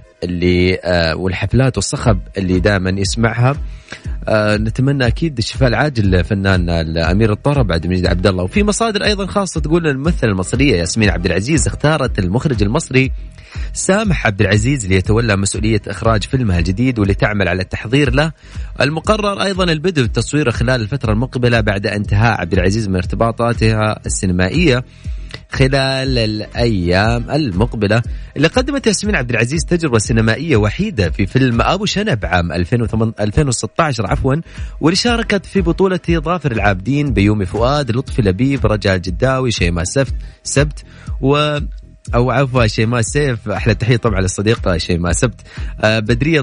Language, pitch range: Arabic, 100-135 Hz